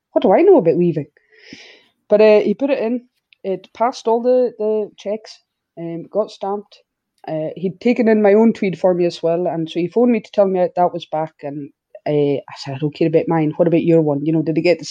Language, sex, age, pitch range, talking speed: English, female, 20-39, 170-230 Hz, 255 wpm